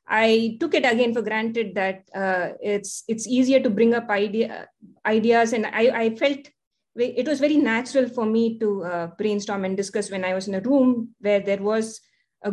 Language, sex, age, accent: English, female, 20-39, Indian